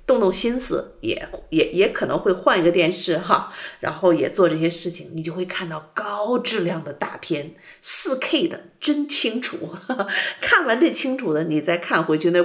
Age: 50-69